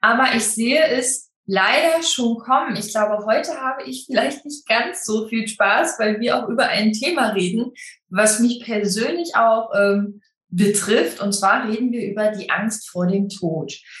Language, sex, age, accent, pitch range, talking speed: German, female, 20-39, German, 190-235 Hz, 175 wpm